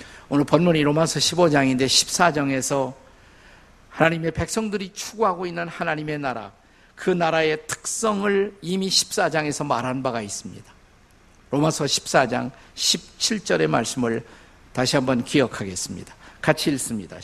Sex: male